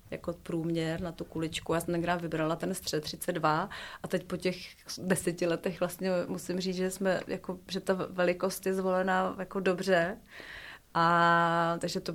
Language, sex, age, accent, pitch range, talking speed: Czech, female, 30-49, native, 175-195 Hz, 170 wpm